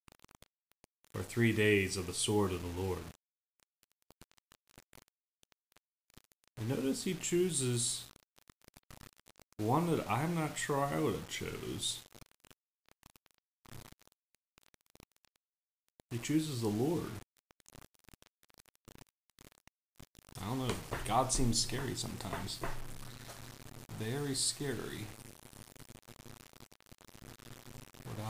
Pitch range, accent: 105-120 Hz, American